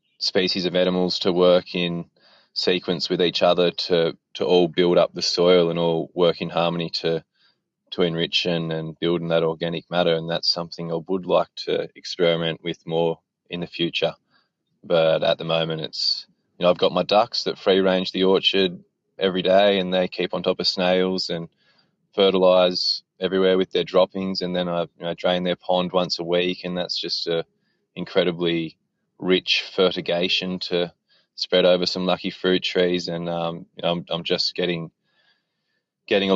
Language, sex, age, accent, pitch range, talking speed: English, male, 20-39, Australian, 85-95 Hz, 180 wpm